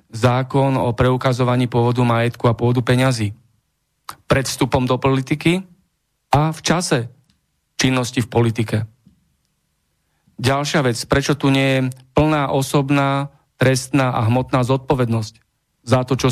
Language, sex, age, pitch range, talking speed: Slovak, male, 40-59, 125-140 Hz, 120 wpm